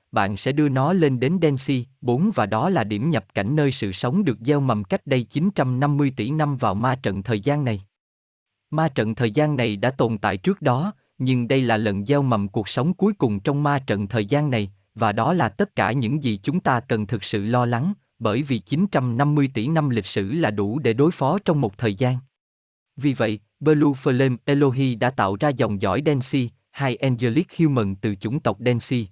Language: Vietnamese